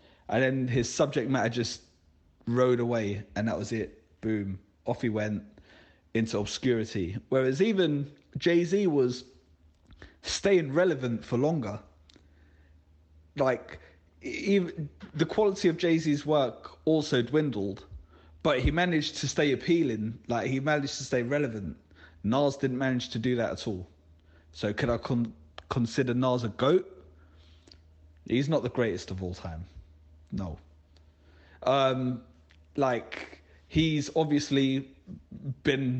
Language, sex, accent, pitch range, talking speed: English, male, British, 95-130 Hz, 125 wpm